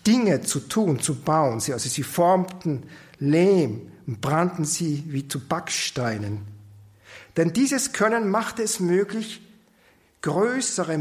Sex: male